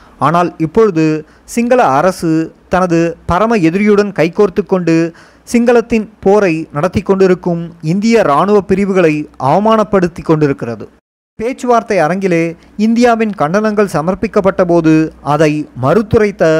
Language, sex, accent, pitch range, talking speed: Tamil, male, native, 160-210 Hz, 90 wpm